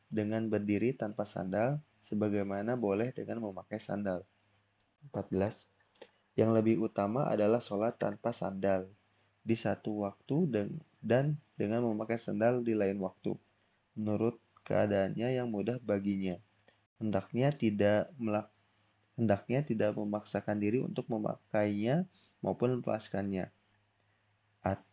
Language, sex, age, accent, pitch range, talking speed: Indonesian, male, 30-49, native, 100-115 Hz, 110 wpm